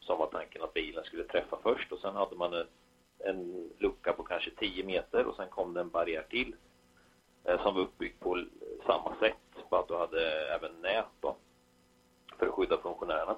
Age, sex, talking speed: 30-49, male, 195 wpm